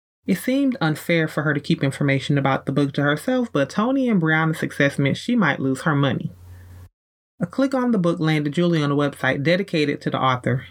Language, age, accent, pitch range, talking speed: English, 30-49, American, 130-170 Hz, 215 wpm